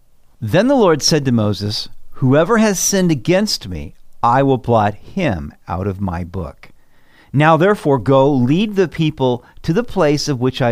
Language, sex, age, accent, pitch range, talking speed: English, male, 50-69, American, 110-160 Hz, 175 wpm